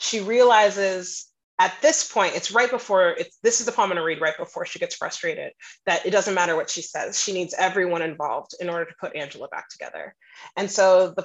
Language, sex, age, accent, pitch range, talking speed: English, female, 30-49, American, 180-220 Hz, 225 wpm